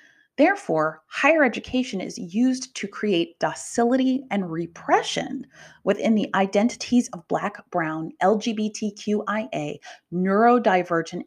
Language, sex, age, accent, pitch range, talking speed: English, female, 30-49, American, 175-240 Hz, 95 wpm